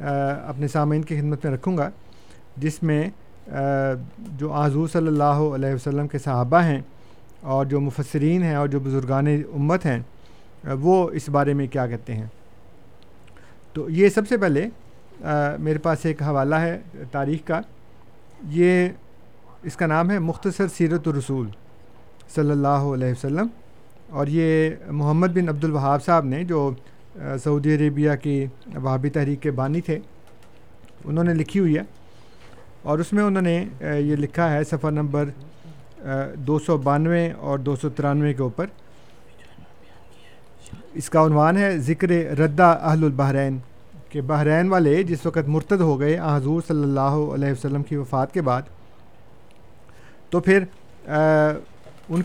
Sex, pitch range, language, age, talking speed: male, 135-160 Hz, Urdu, 50-69, 140 wpm